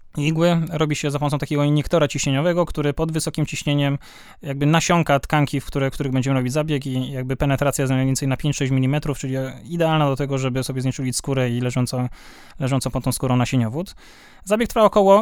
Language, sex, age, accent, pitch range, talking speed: Polish, male, 20-39, native, 135-165 Hz, 180 wpm